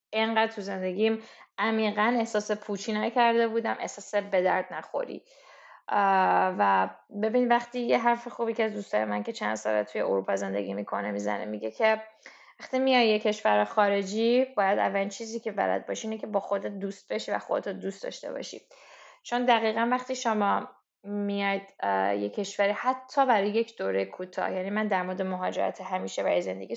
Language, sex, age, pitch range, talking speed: Persian, female, 10-29, 195-235 Hz, 165 wpm